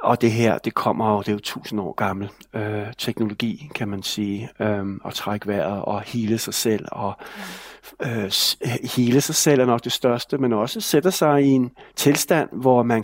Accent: native